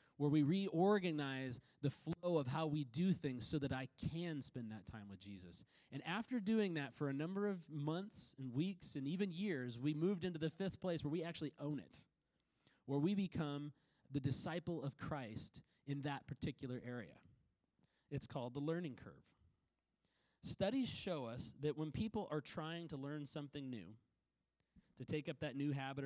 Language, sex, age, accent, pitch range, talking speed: English, male, 30-49, American, 125-160 Hz, 180 wpm